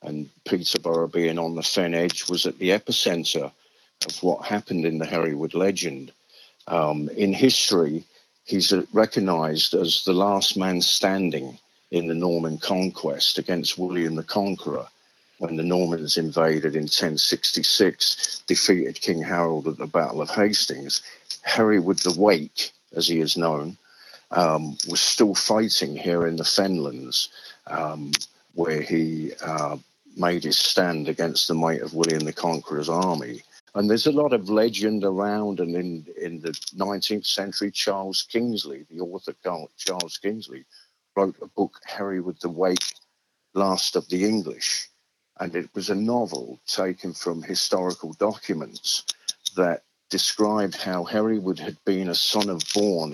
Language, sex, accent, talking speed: English, male, British, 145 wpm